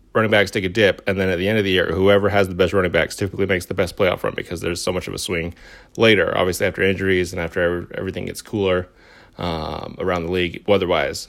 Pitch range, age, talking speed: 90-120 Hz, 30-49, 245 wpm